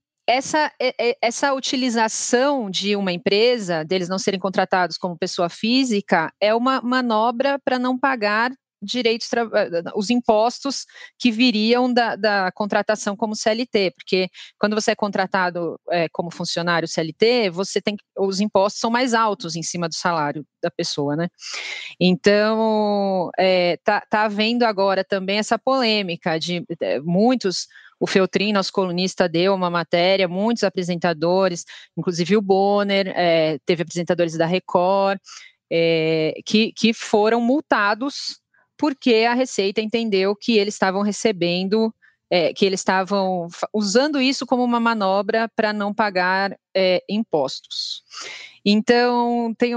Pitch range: 180-230 Hz